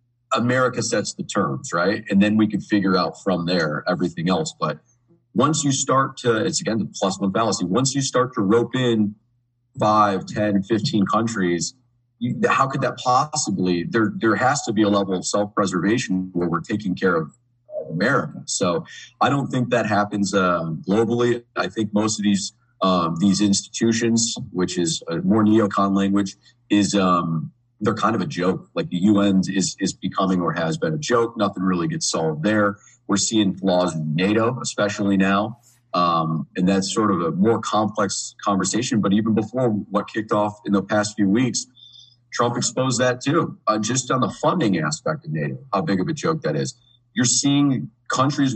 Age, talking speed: 40-59, 185 wpm